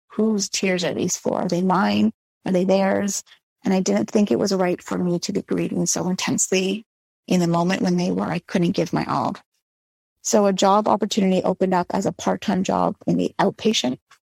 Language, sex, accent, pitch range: English, female, American, 180-210 Hz